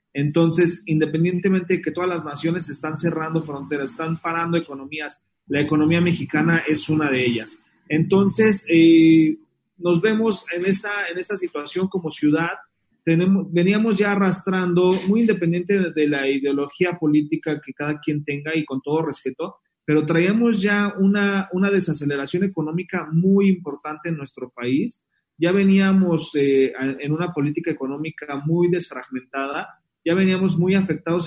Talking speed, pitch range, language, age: 140 wpm, 150-180 Hz, Spanish, 30-49